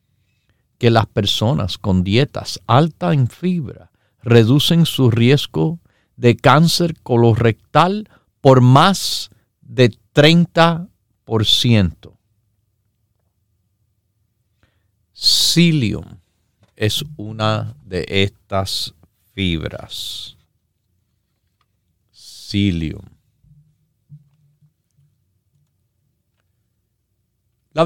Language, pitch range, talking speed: Spanish, 100-130 Hz, 55 wpm